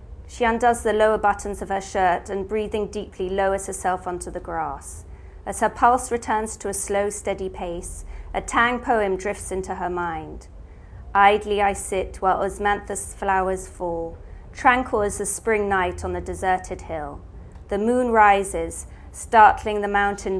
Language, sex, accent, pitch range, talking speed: English, female, British, 170-210 Hz, 160 wpm